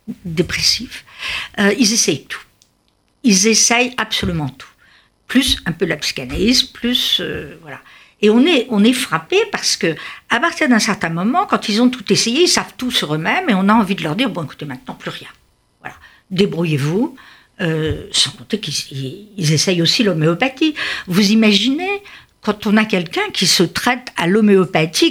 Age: 60-79